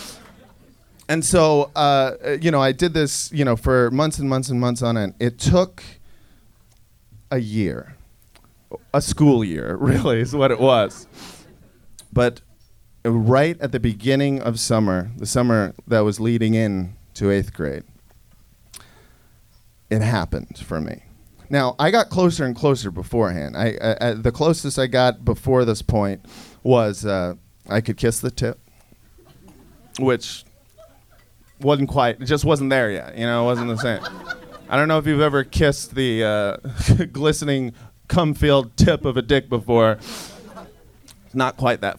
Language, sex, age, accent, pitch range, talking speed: English, male, 40-59, American, 110-135 Hz, 155 wpm